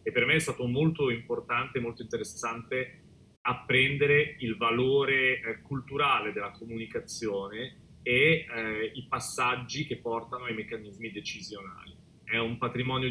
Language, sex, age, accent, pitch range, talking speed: Italian, male, 30-49, native, 115-140 Hz, 130 wpm